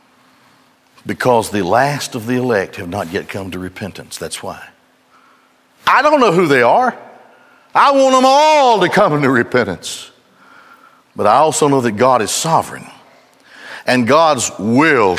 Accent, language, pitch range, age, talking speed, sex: American, English, 155-240 Hz, 60-79, 155 wpm, male